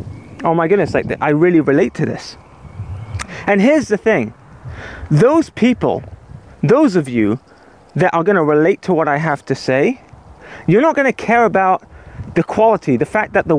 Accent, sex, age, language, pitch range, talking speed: British, male, 30-49, English, 150-215 Hz, 180 wpm